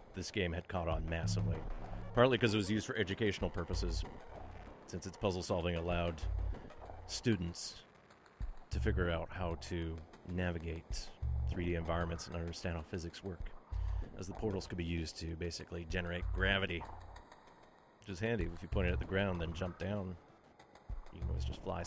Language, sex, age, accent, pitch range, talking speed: English, male, 30-49, American, 85-105 Hz, 165 wpm